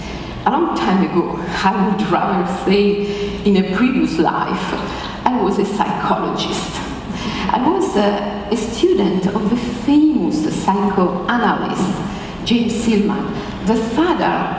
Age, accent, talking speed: 50-69, native, 120 wpm